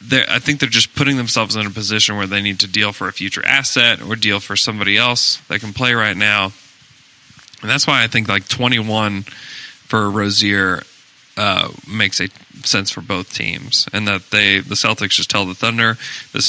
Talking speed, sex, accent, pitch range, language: 195 wpm, male, American, 100-120 Hz, English